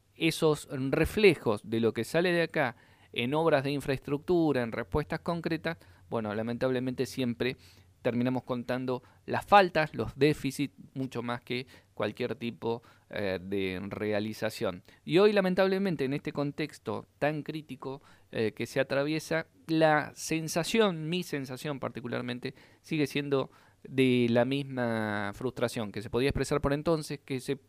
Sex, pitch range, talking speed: male, 115-150 Hz, 135 wpm